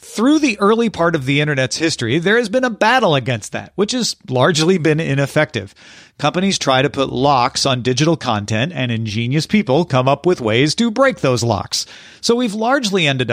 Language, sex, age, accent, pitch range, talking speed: English, male, 40-59, American, 130-195 Hz, 195 wpm